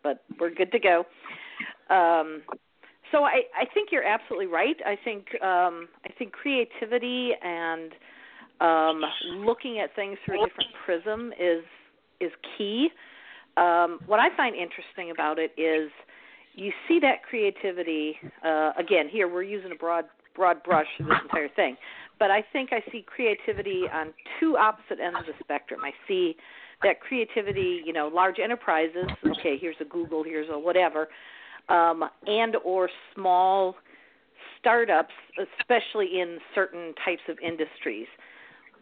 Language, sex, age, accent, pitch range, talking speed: English, female, 50-69, American, 165-245 Hz, 145 wpm